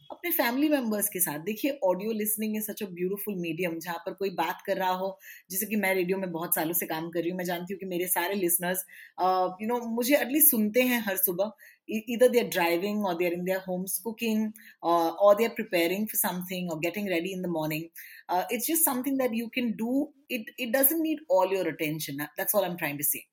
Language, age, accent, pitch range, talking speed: Hindi, 20-39, native, 170-225 Hz, 105 wpm